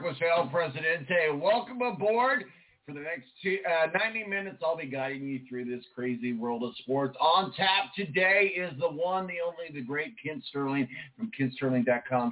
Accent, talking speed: American, 165 wpm